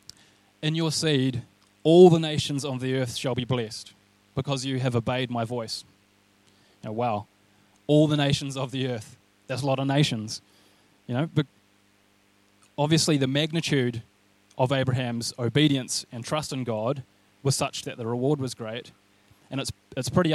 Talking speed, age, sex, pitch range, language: 155 wpm, 20-39, male, 100-140 Hz, English